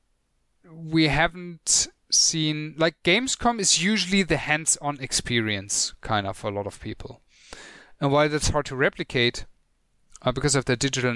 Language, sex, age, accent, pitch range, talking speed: English, male, 30-49, German, 120-150 Hz, 150 wpm